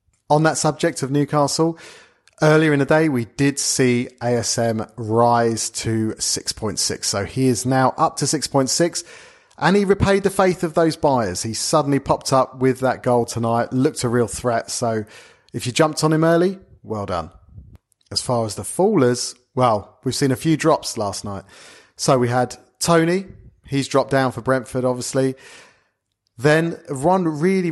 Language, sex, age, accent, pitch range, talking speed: English, male, 40-59, British, 115-150 Hz, 170 wpm